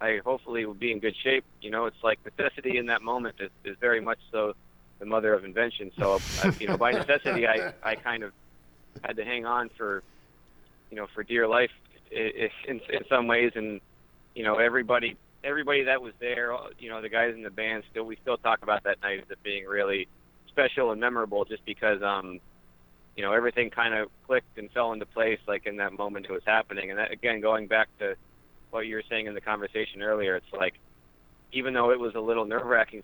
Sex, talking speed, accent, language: male, 220 wpm, American, English